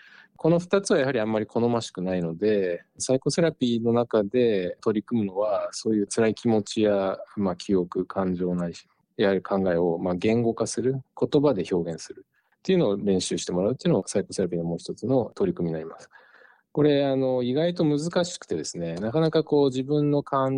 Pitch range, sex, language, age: 95-135 Hz, male, Japanese, 20-39